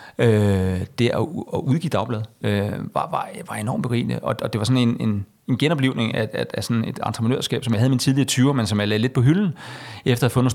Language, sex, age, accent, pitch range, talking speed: Danish, male, 30-49, native, 105-130 Hz, 260 wpm